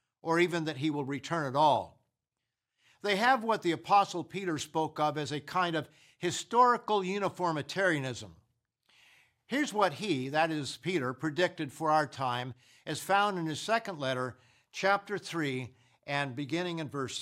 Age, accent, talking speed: 50-69, American, 155 wpm